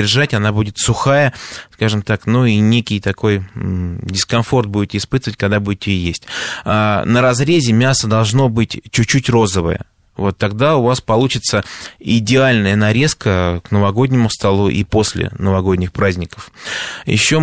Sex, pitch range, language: male, 100-125 Hz, Russian